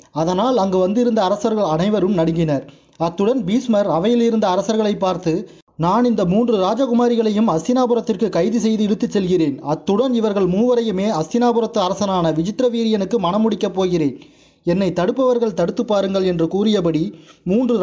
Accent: native